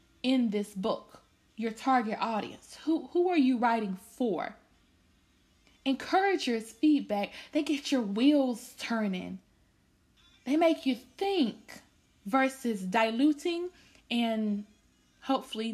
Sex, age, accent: female, 20-39, American